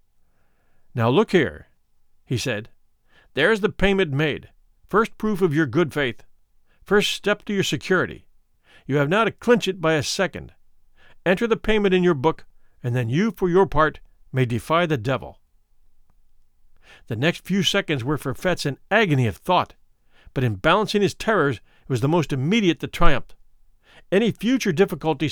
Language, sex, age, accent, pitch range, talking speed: English, male, 50-69, American, 135-200 Hz, 170 wpm